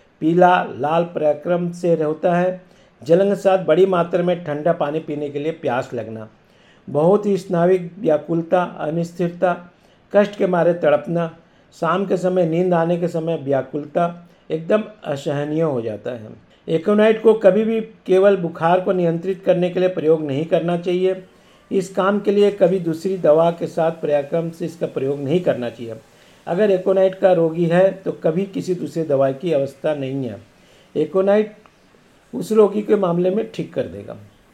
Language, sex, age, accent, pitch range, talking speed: Hindi, male, 50-69, native, 160-200 Hz, 165 wpm